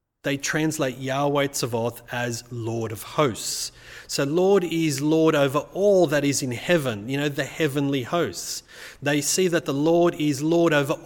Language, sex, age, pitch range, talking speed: English, male, 30-49, 125-155 Hz, 170 wpm